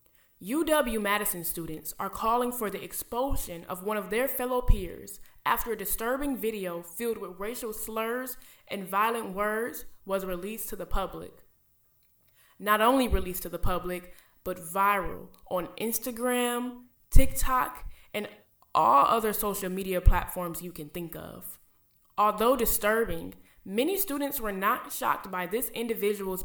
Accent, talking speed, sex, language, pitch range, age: American, 135 wpm, female, English, 195-245 Hz, 20-39